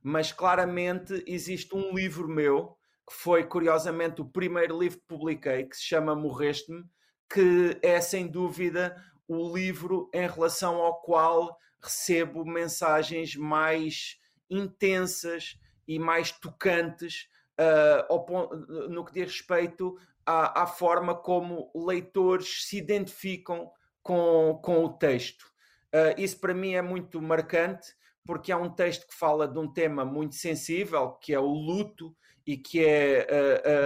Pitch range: 155-180 Hz